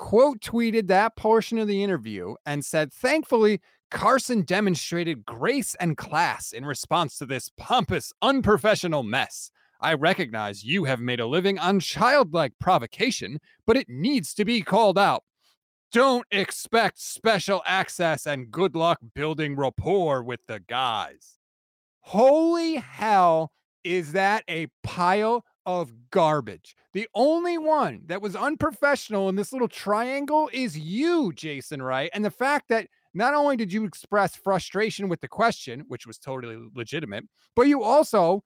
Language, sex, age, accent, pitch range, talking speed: English, male, 30-49, American, 165-245 Hz, 145 wpm